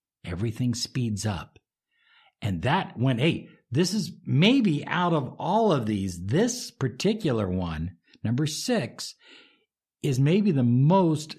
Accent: American